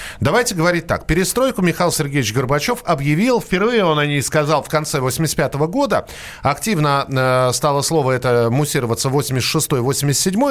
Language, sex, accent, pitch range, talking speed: Russian, male, native, 115-170 Hz, 135 wpm